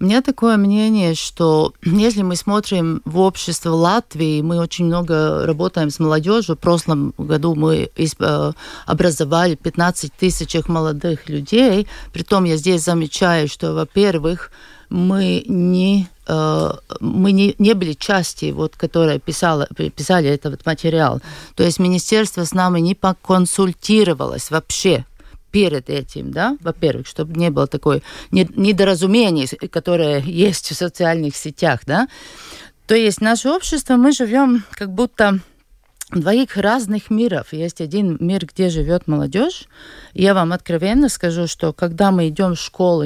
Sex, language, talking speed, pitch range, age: female, Russian, 125 wpm, 160-200 Hz, 50-69